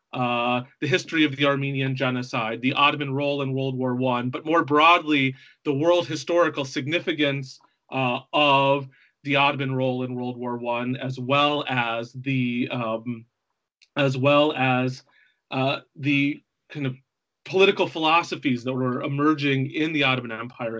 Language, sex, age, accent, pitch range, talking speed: English, male, 30-49, American, 130-155 Hz, 145 wpm